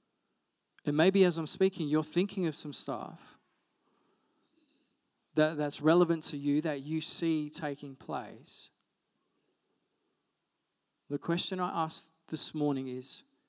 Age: 40-59